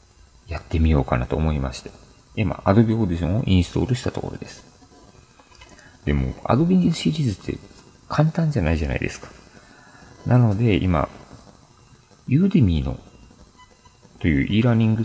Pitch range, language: 80-125 Hz, Japanese